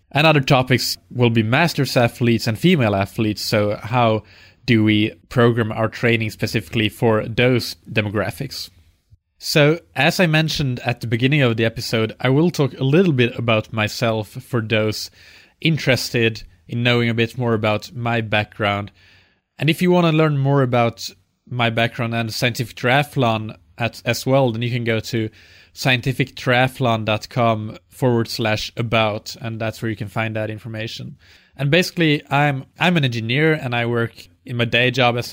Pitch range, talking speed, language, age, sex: 110-125 Hz, 165 wpm, English, 20-39, male